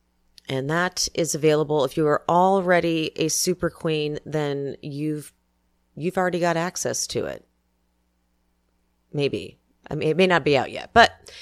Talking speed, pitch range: 150 wpm, 140-180 Hz